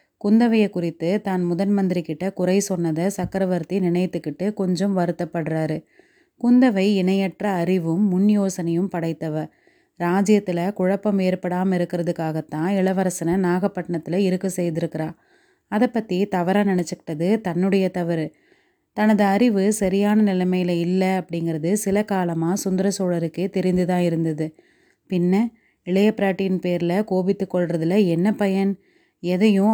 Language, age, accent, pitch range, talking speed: Tamil, 30-49, native, 175-200 Hz, 100 wpm